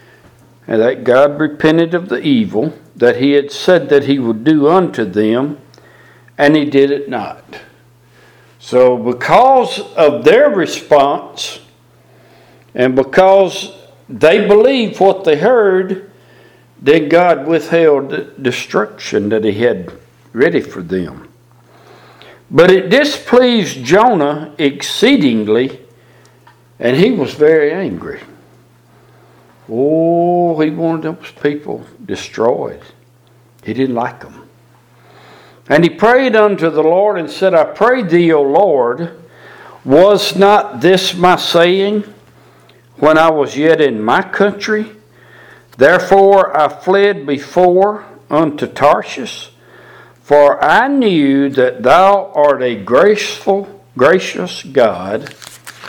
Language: English